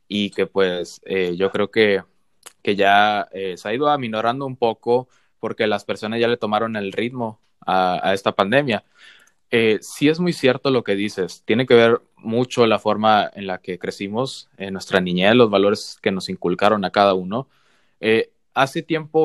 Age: 20-39